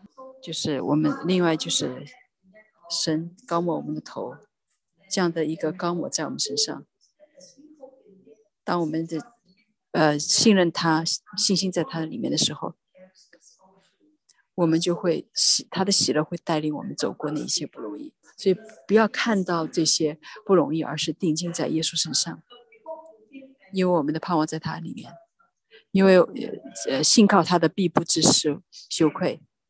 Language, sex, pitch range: English, female, 155-195 Hz